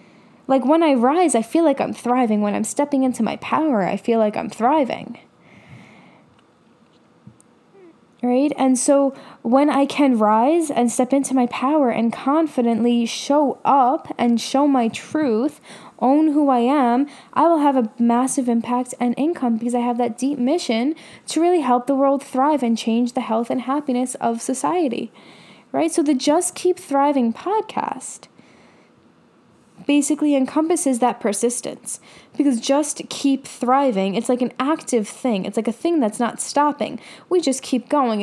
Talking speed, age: 160 wpm, 10-29